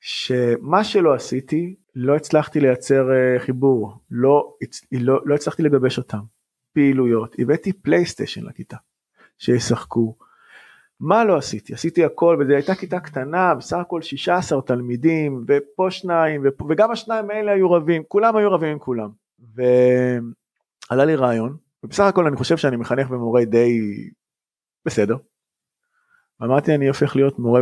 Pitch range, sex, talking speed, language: 125-170 Hz, male, 135 wpm, Hebrew